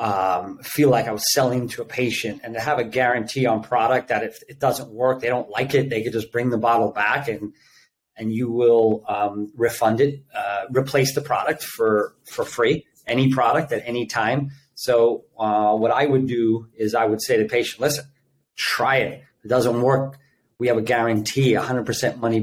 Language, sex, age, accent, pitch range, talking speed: English, male, 30-49, American, 115-135 Hz, 205 wpm